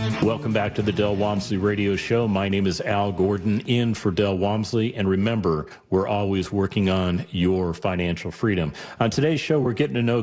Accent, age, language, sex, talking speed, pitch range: American, 40-59, English, male, 195 wpm, 95-110 Hz